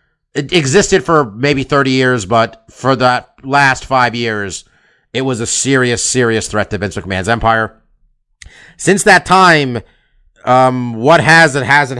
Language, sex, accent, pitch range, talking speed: English, male, American, 105-135 Hz, 150 wpm